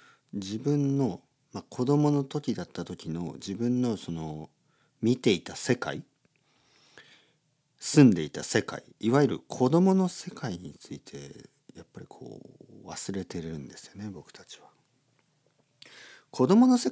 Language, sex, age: Japanese, male, 50-69